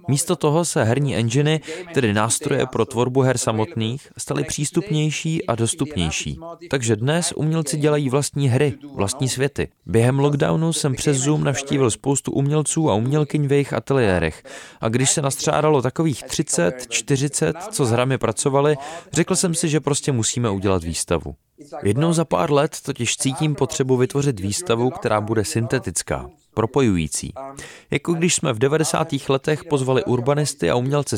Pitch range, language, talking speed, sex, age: 115-155 Hz, Czech, 150 wpm, male, 20-39